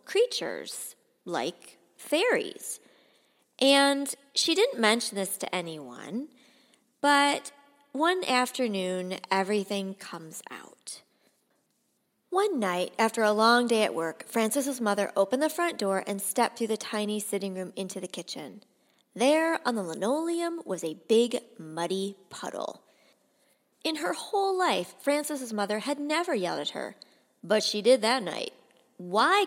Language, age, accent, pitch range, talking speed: English, 30-49, American, 200-315 Hz, 135 wpm